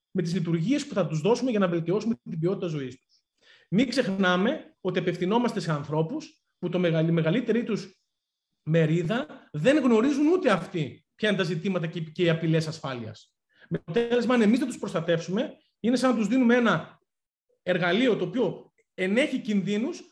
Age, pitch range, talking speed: 30-49, 170-240 Hz, 170 wpm